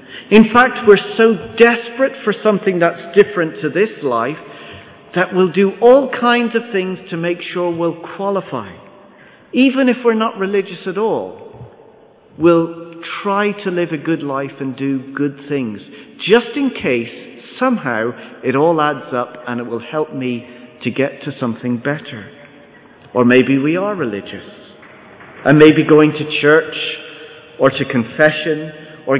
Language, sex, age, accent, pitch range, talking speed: English, male, 40-59, British, 140-225 Hz, 150 wpm